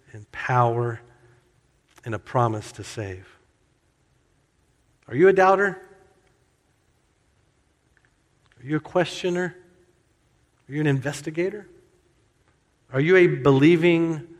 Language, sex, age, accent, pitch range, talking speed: English, male, 50-69, American, 115-155 Hz, 95 wpm